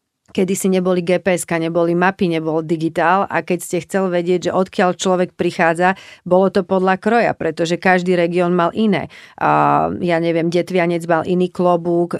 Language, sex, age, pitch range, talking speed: Czech, female, 40-59, 165-185 Hz, 160 wpm